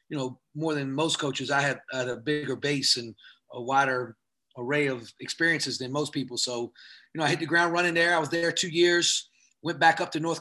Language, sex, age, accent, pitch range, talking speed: English, male, 30-49, American, 130-155 Hz, 225 wpm